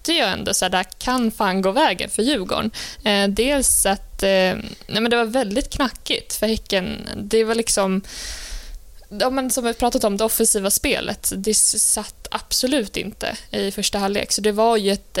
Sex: female